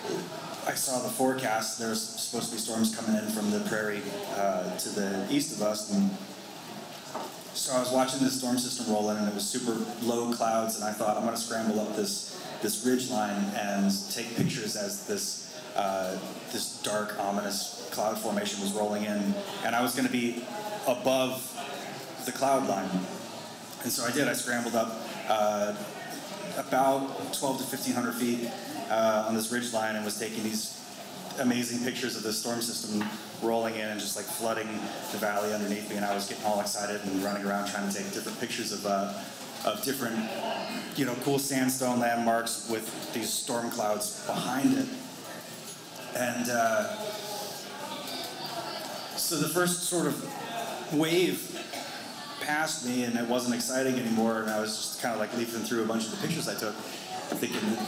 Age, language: 30-49, English